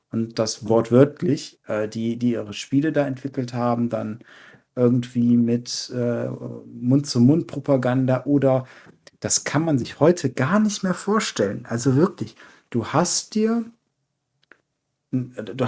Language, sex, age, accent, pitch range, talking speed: German, male, 40-59, German, 130-195 Hz, 125 wpm